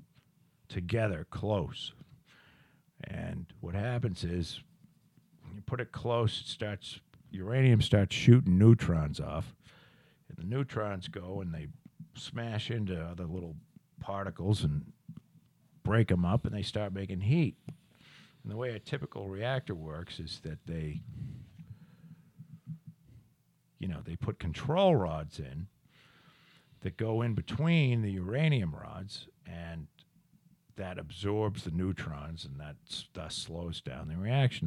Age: 50-69